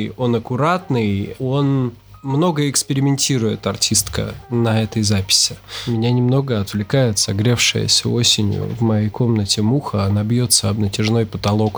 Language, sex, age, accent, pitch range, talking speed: Russian, male, 20-39, native, 110-135 Hz, 115 wpm